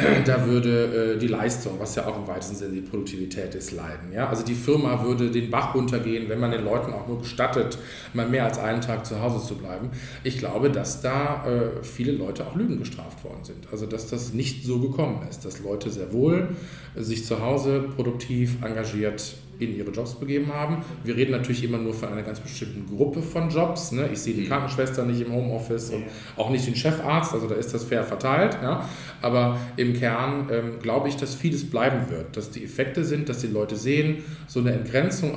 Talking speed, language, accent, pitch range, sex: 205 wpm, German, German, 115-145 Hz, male